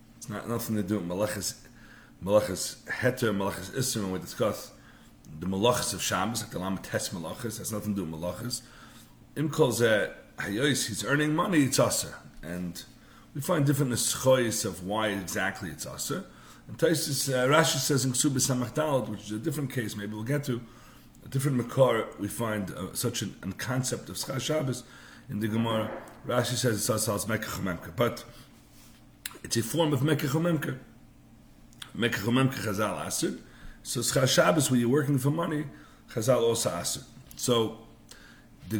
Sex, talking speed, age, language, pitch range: male, 160 wpm, 40-59, English, 110-140 Hz